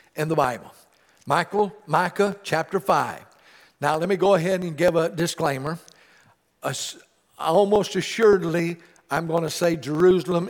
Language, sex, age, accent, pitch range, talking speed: English, male, 60-79, American, 165-195 Hz, 130 wpm